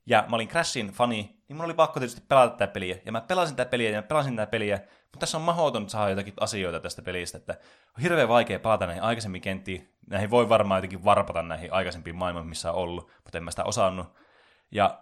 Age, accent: 20-39, native